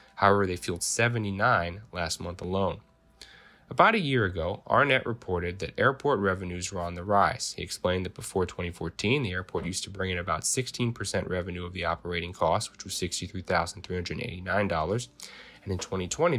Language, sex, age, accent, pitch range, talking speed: English, male, 20-39, American, 90-110 Hz, 155 wpm